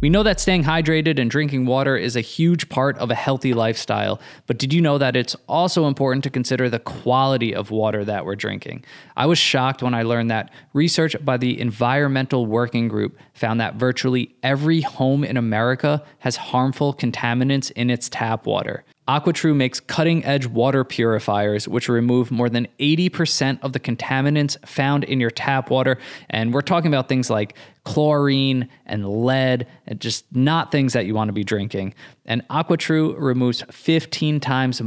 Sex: male